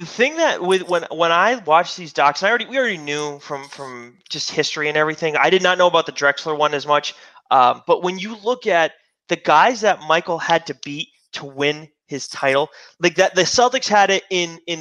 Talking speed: 230 wpm